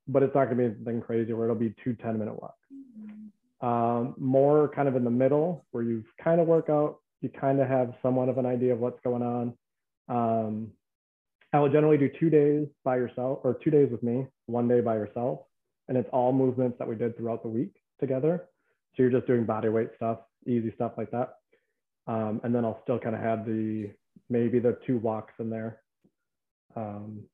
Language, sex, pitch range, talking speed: English, male, 115-130 Hz, 210 wpm